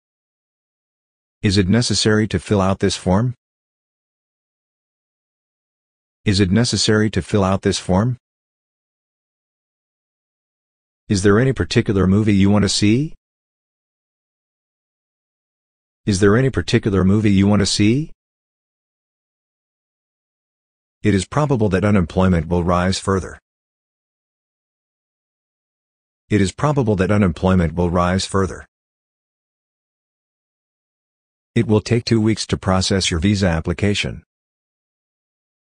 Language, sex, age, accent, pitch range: Japanese, male, 40-59, American, 90-110 Hz